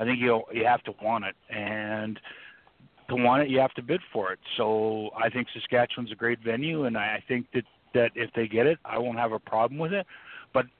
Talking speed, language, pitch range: 230 wpm, English, 115-130 Hz